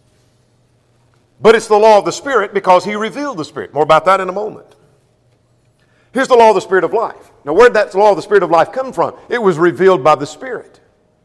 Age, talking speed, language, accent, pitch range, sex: 50-69, 235 wpm, English, American, 165-225 Hz, male